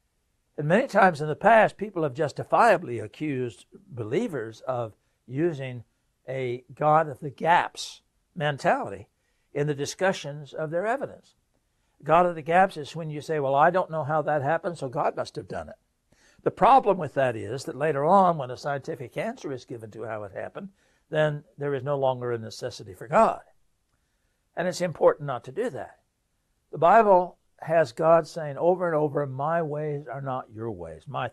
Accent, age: American, 60-79